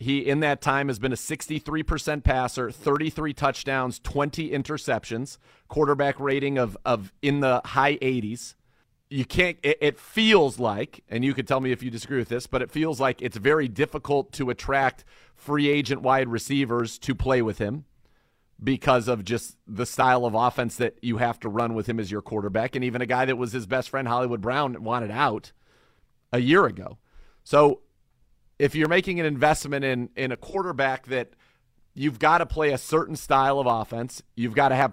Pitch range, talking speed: 120-150 Hz, 190 wpm